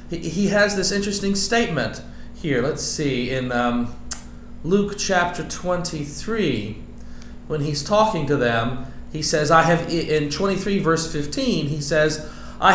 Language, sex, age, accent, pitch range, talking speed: English, male, 40-59, American, 125-200 Hz, 135 wpm